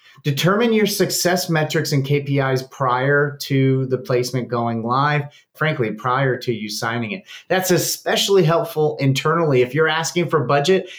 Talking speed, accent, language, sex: 145 wpm, American, English, male